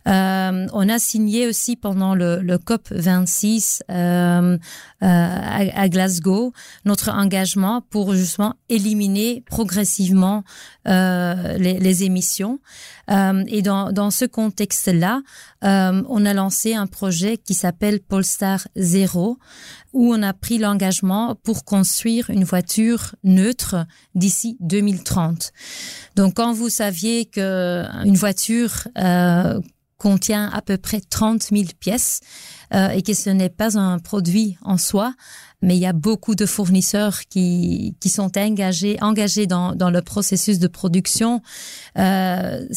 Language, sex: French, female